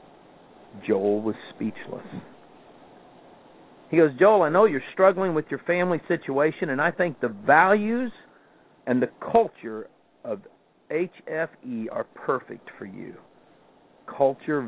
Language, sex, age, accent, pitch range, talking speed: English, male, 50-69, American, 115-150 Hz, 120 wpm